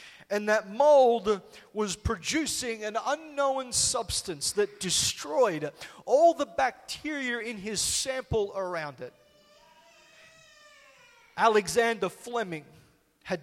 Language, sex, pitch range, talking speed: English, male, 165-235 Hz, 95 wpm